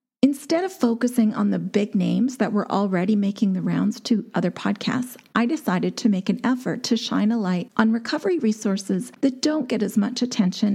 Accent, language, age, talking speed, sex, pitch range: American, English, 40-59, 195 wpm, female, 195-235 Hz